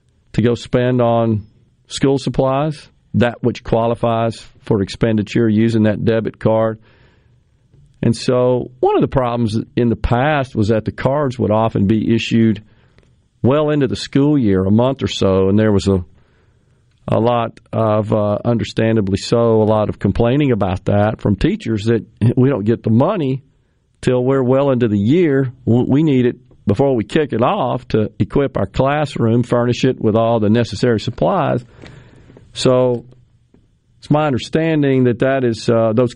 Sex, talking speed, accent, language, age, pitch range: male, 165 wpm, American, English, 40-59, 105-125 Hz